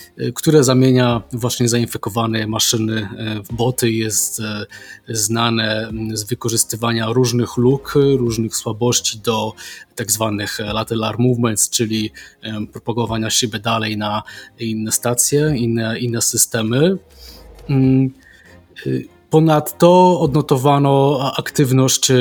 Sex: male